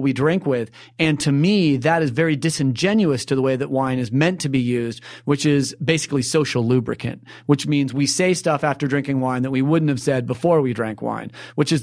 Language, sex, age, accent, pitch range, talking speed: English, male, 30-49, American, 135-175 Hz, 225 wpm